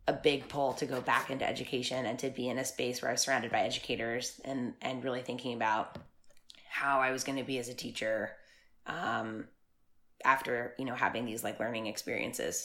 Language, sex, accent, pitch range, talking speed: English, female, American, 125-135 Hz, 205 wpm